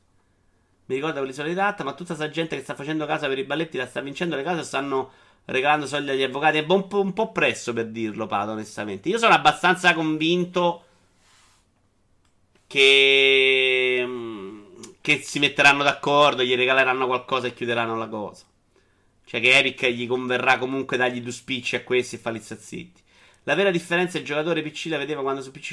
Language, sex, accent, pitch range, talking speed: Italian, male, native, 125-180 Hz, 180 wpm